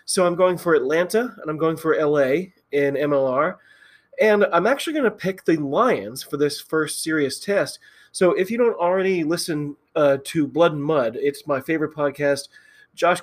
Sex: male